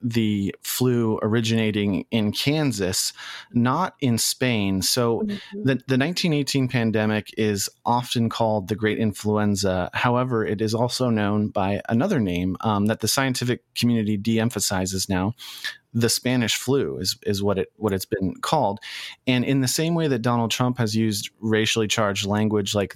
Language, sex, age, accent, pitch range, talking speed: English, male, 30-49, American, 105-125 Hz, 155 wpm